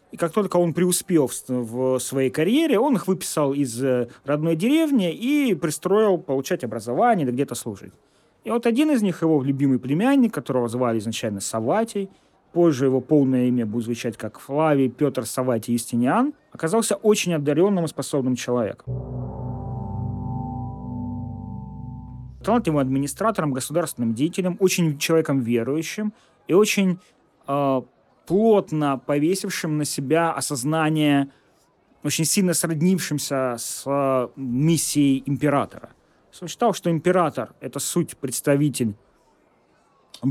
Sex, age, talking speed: male, 30-49, 115 wpm